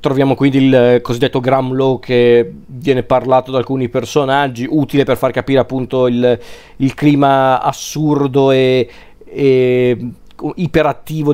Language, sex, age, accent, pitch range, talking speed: Italian, male, 40-59, native, 125-150 Hz, 120 wpm